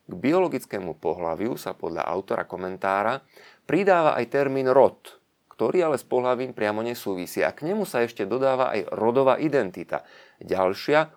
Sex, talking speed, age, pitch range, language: male, 145 wpm, 30-49, 95-130 Hz, Slovak